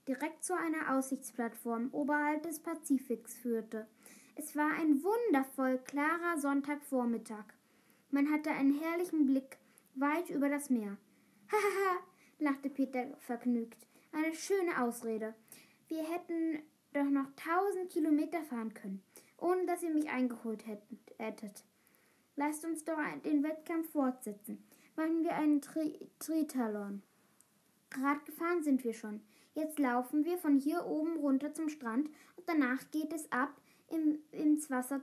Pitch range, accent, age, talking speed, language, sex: 250-315 Hz, German, 20-39, 130 wpm, German, female